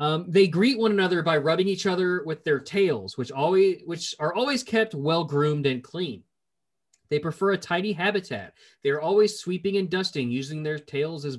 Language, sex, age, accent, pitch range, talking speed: English, male, 30-49, American, 130-195 Hz, 185 wpm